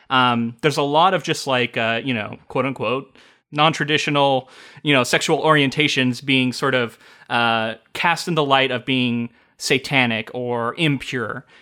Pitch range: 120-145 Hz